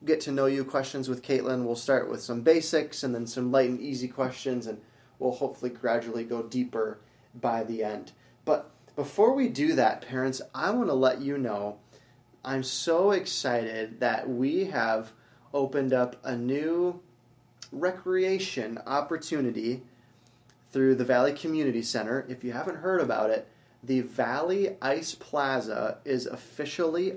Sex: male